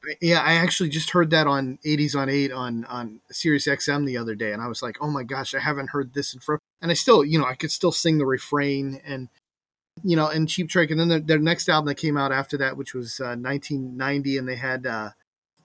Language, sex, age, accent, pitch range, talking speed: English, male, 30-49, American, 135-155 Hz, 255 wpm